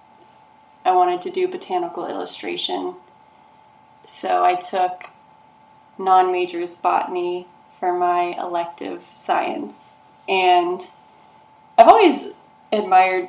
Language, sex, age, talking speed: English, female, 20-39, 85 wpm